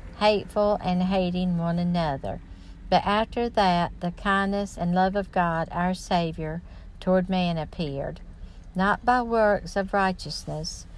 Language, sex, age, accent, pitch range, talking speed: English, female, 60-79, American, 160-195 Hz, 130 wpm